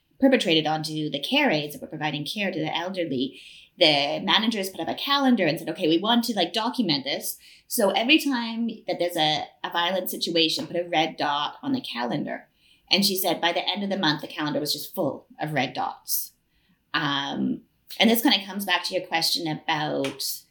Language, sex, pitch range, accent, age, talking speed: English, female, 160-240 Hz, American, 30-49, 210 wpm